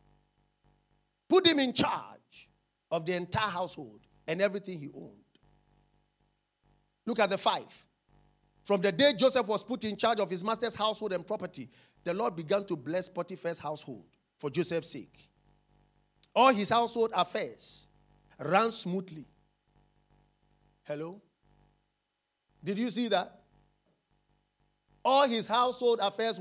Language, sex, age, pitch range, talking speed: English, male, 50-69, 175-245 Hz, 125 wpm